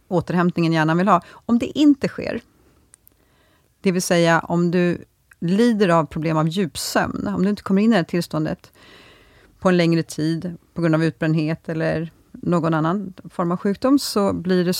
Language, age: Swedish, 30-49